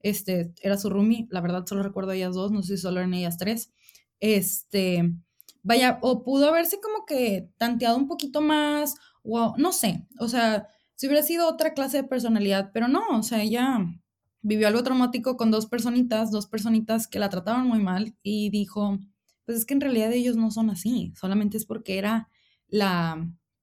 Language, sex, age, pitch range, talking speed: Spanish, female, 20-39, 195-245 Hz, 190 wpm